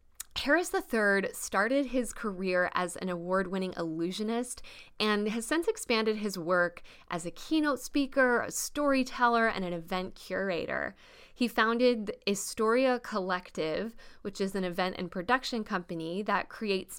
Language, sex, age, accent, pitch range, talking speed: English, female, 10-29, American, 180-220 Hz, 140 wpm